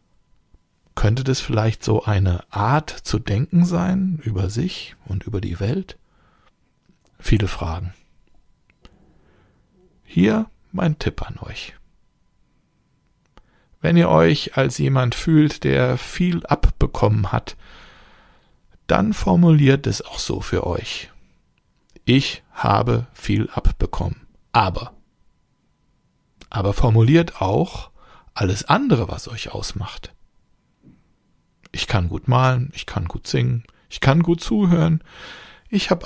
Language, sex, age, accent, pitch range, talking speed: German, male, 60-79, German, 100-150 Hz, 110 wpm